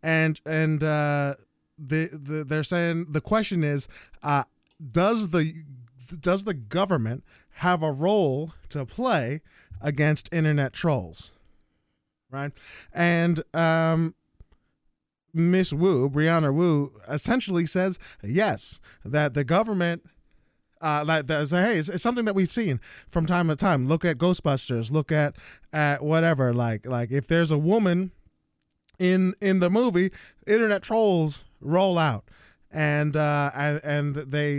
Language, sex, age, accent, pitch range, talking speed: English, male, 20-39, American, 140-180 Hz, 135 wpm